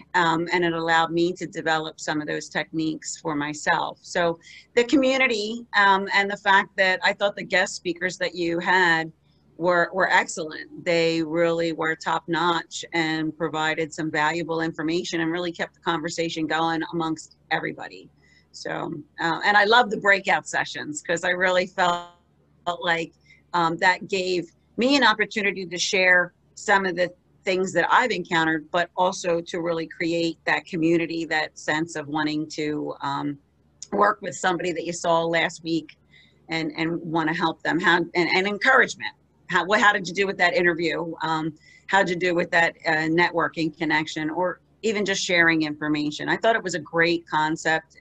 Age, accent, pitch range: 40-59, American, 160-180 Hz